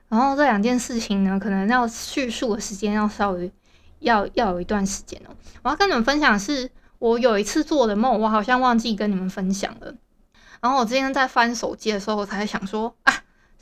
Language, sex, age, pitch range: Chinese, female, 20-39, 210-260 Hz